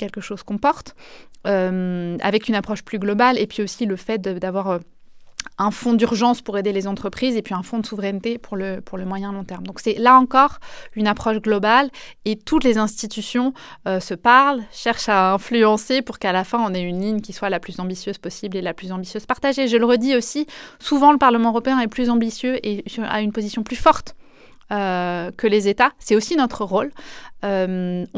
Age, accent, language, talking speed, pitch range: 20-39, French, French, 210 wpm, 195-235 Hz